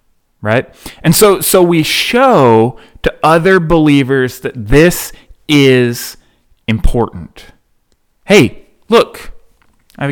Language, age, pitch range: English, 30-49, 110-160 Hz